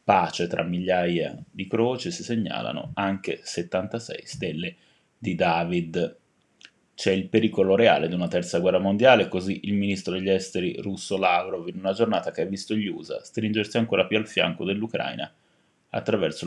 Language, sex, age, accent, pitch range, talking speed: Italian, male, 20-39, native, 95-115 Hz, 155 wpm